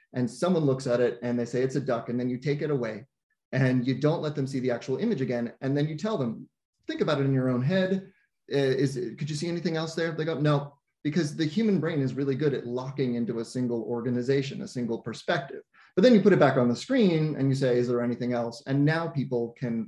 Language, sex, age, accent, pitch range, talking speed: English, male, 30-49, American, 125-150 Hz, 255 wpm